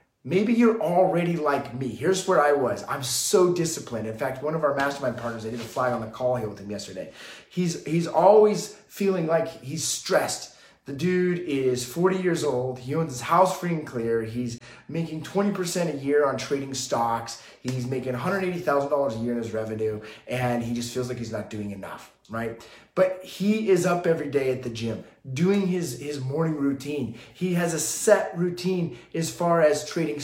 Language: English